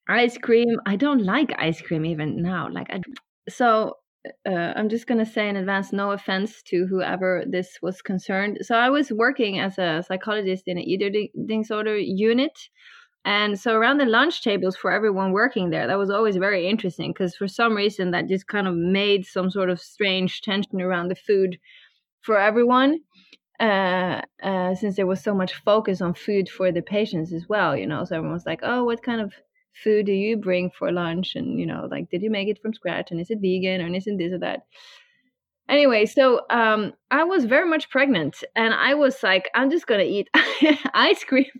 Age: 20-39